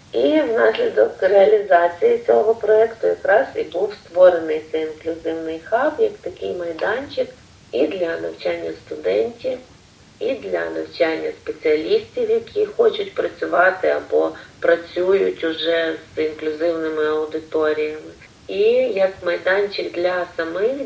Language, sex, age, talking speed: Ukrainian, female, 40-59, 105 wpm